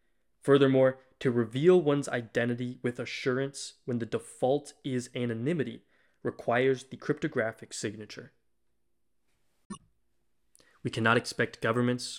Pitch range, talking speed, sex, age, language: 110-125 Hz, 100 wpm, male, 20-39, English